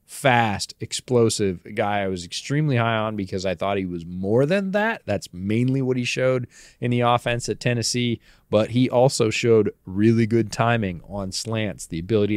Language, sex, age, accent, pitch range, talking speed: English, male, 20-39, American, 100-120 Hz, 180 wpm